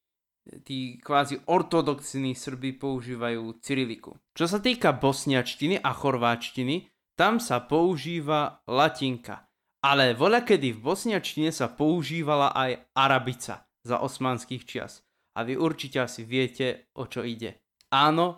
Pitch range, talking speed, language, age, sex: 125-155 Hz, 120 wpm, Slovak, 20-39, male